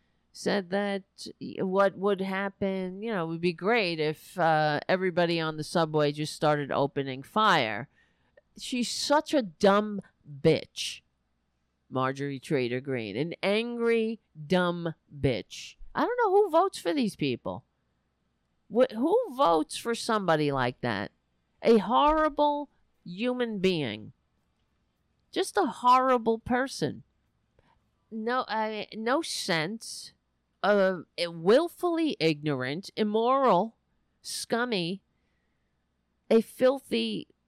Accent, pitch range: American, 140-230 Hz